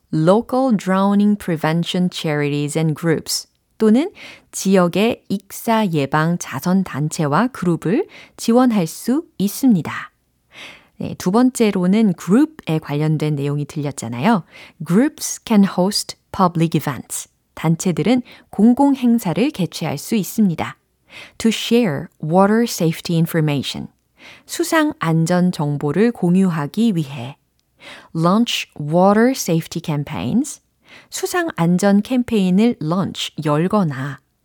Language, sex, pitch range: Korean, female, 160-230 Hz